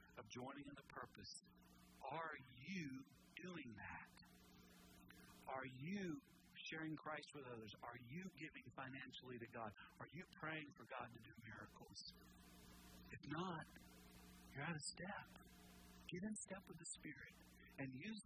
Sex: male